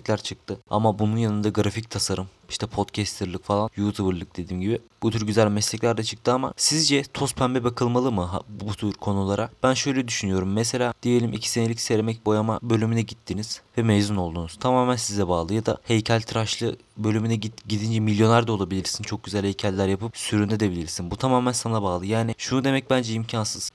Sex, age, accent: male, 30-49, native